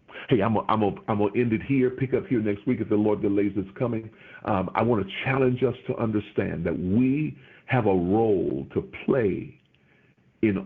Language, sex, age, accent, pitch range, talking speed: English, male, 50-69, American, 110-145 Hz, 195 wpm